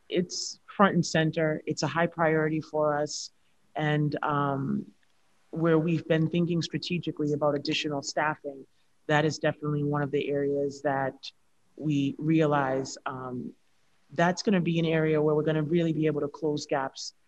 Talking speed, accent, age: 155 wpm, American, 30-49